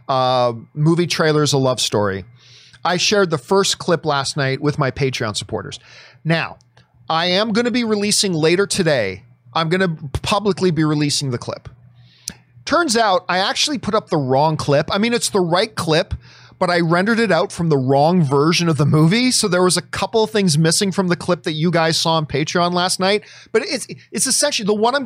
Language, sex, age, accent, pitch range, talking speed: English, male, 40-59, American, 135-190 Hz, 210 wpm